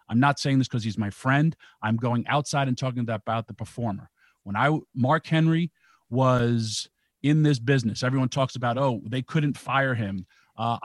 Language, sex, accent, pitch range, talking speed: English, male, American, 120-145 Hz, 185 wpm